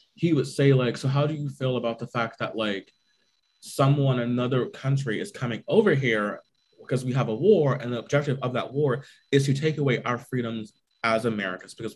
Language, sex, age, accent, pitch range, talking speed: English, male, 20-39, American, 120-145 Hz, 205 wpm